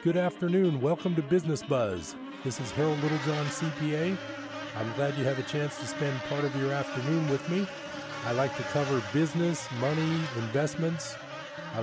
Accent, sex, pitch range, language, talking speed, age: American, male, 115-150 Hz, English, 165 wpm, 40-59